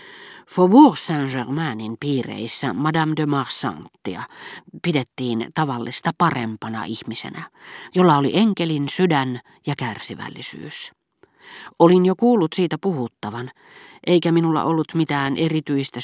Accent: native